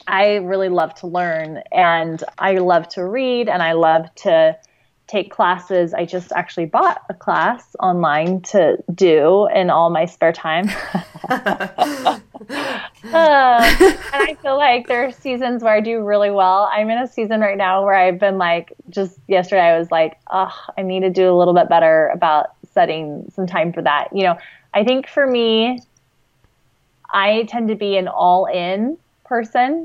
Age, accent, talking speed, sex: 20-39, American, 175 wpm, female